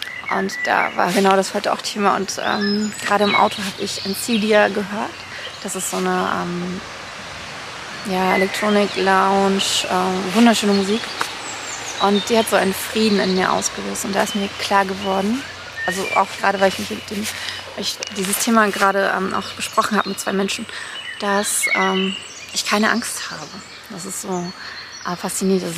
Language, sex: German, female